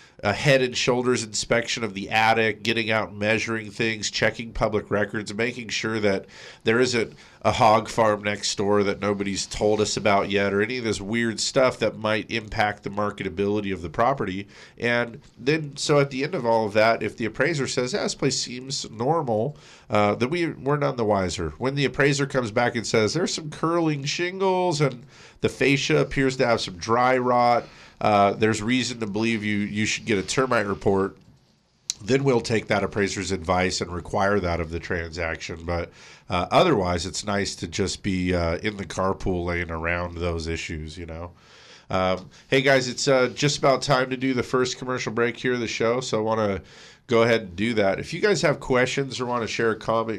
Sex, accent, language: male, American, English